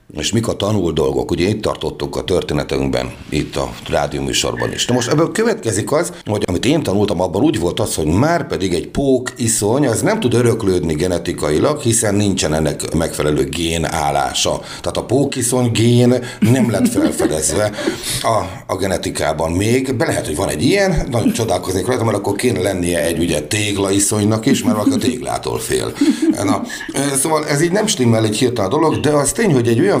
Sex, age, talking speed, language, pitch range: male, 60-79, 180 wpm, Hungarian, 85-130 Hz